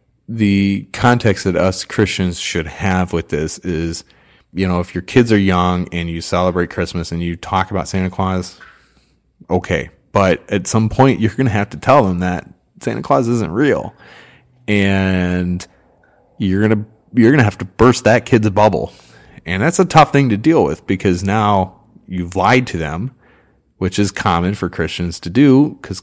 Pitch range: 90-110 Hz